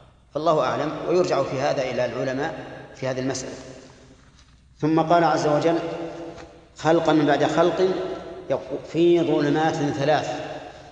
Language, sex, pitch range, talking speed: Arabic, male, 125-150 Hz, 110 wpm